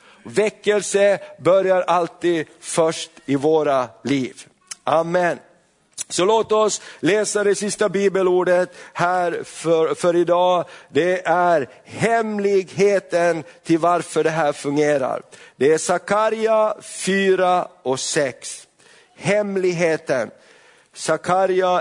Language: Swedish